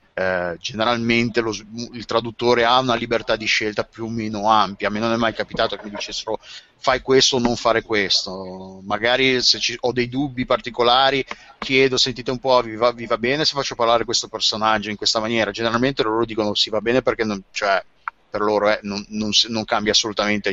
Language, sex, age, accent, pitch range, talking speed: Italian, male, 30-49, native, 110-130 Hz, 210 wpm